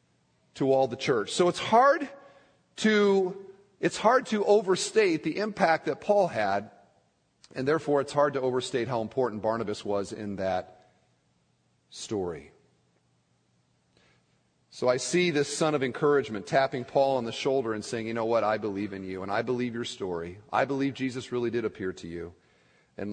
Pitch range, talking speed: 110-185 Hz, 170 wpm